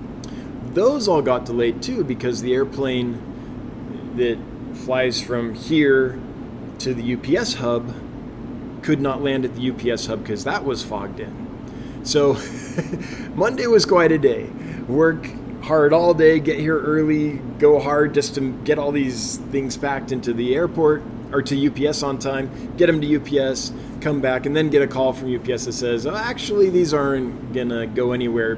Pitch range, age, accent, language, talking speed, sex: 120-145 Hz, 20-39, American, English, 170 wpm, male